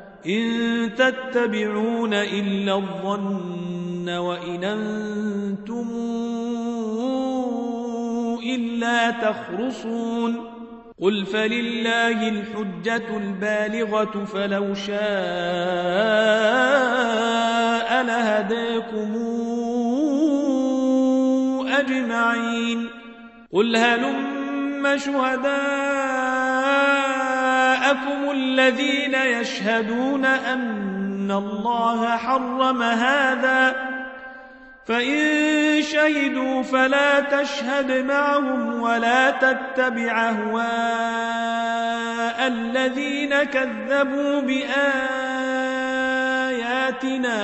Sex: male